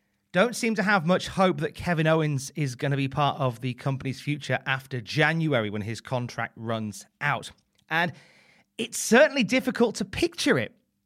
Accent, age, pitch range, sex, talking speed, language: British, 30-49, 130-190 Hz, male, 175 wpm, English